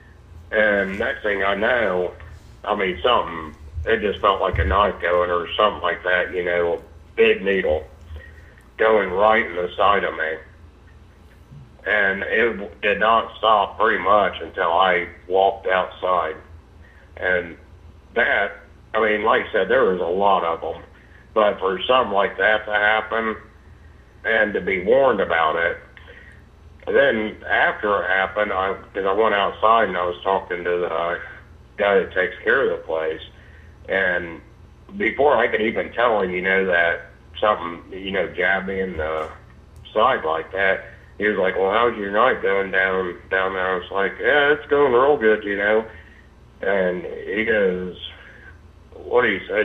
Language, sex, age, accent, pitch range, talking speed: English, male, 60-79, American, 85-110 Hz, 165 wpm